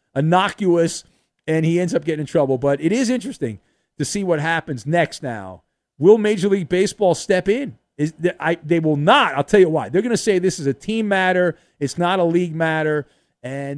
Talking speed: 215 wpm